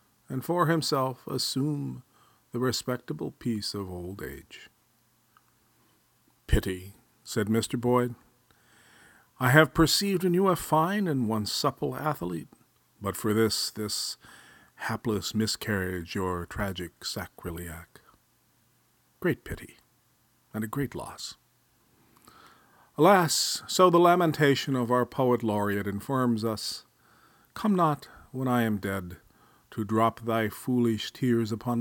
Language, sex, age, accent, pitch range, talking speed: English, male, 50-69, American, 105-135 Hz, 115 wpm